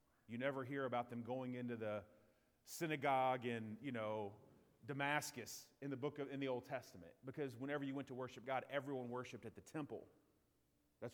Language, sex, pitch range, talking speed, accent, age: English, male, 125-150 Hz, 185 wpm, American, 30-49